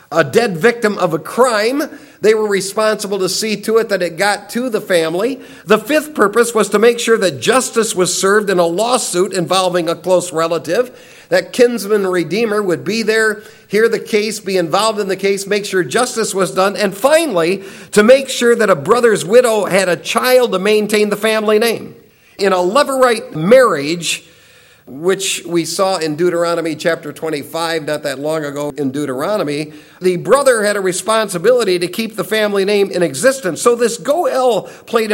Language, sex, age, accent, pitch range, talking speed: English, male, 50-69, American, 175-225 Hz, 180 wpm